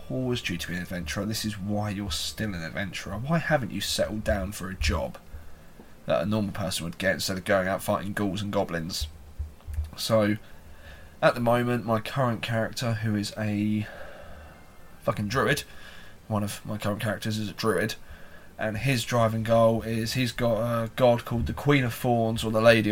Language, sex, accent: English, male, British